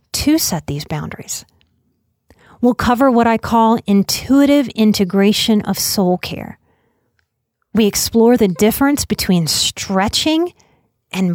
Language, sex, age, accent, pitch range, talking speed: English, female, 30-49, American, 190-245 Hz, 110 wpm